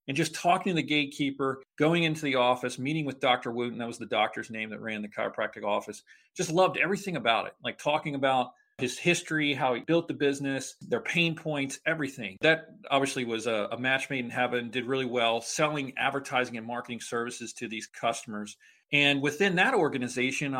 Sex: male